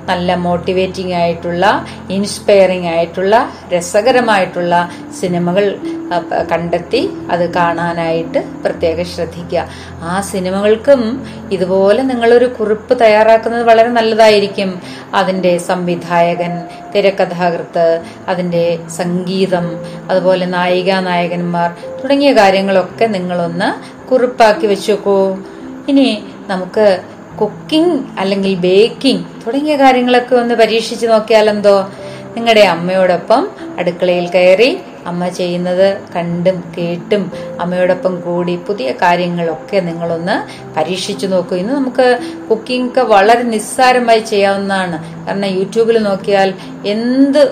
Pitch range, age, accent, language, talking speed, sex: 175-220 Hz, 30-49, native, Malayalam, 85 wpm, female